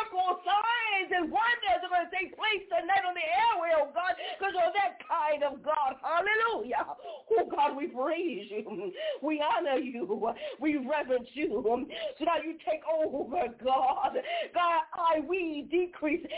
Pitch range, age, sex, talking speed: 295-365 Hz, 40-59, female, 150 wpm